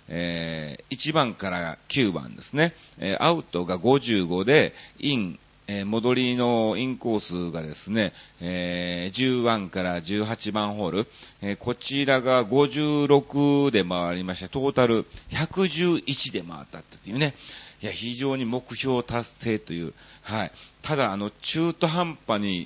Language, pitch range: Japanese, 90-140 Hz